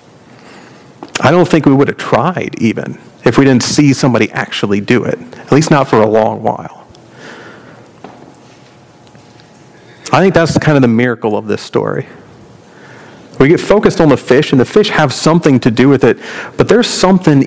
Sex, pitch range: male, 120-150 Hz